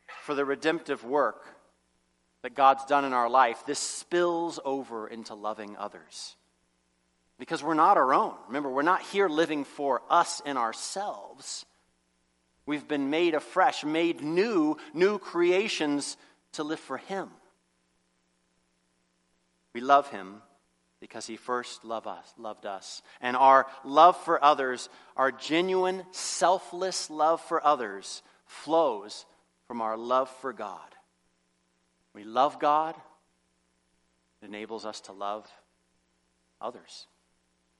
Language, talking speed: English, 120 wpm